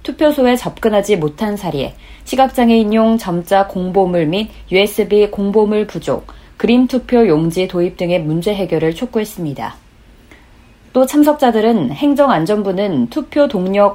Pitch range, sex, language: 180-245 Hz, female, Korean